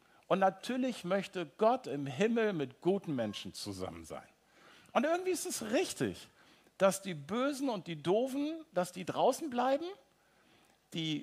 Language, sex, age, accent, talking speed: German, male, 50-69, German, 145 wpm